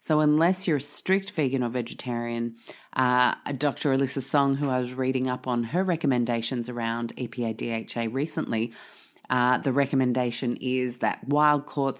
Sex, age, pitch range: female, 30-49, 120-140 Hz